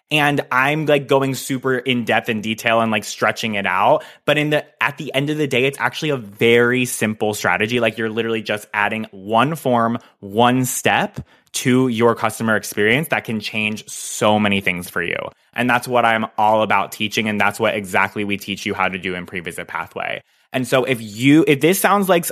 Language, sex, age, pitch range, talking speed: English, male, 20-39, 105-125 Hz, 210 wpm